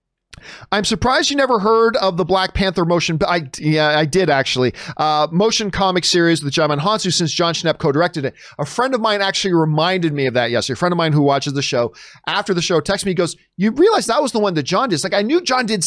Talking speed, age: 250 wpm, 40-59